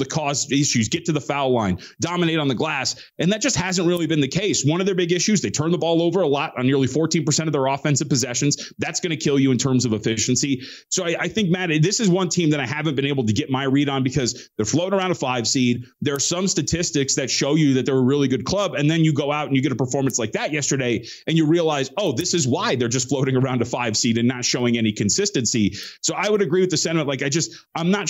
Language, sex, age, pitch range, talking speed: English, male, 30-49, 130-165 Hz, 280 wpm